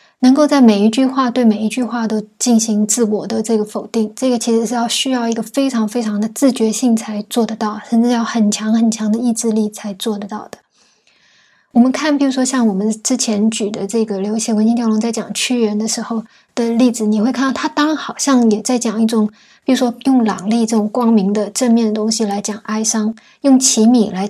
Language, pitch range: Chinese, 215-250 Hz